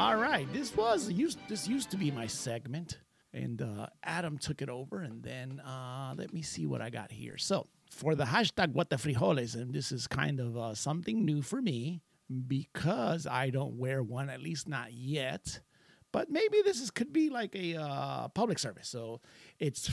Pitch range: 125-180 Hz